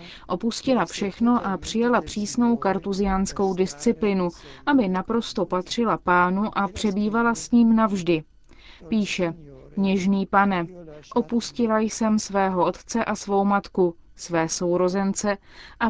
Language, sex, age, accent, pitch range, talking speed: Czech, female, 20-39, native, 190-225 Hz, 110 wpm